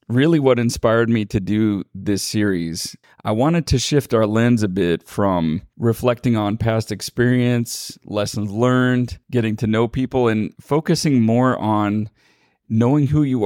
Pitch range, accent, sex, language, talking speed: 105-125 Hz, American, male, English, 150 wpm